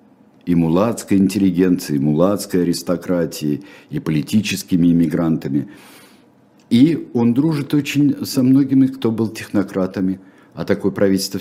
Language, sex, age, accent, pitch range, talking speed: Russian, male, 60-79, native, 75-115 Hz, 110 wpm